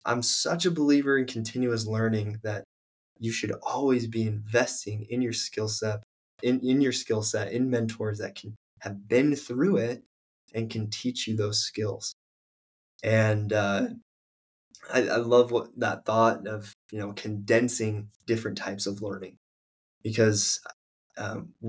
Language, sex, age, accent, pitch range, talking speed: English, male, 20-39, American, 105-115 Hz, 150 wpm